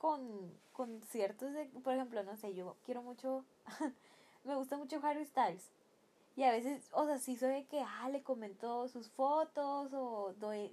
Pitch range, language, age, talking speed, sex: 225-285 Hz, Spanish, 10-29, 180 wpm, female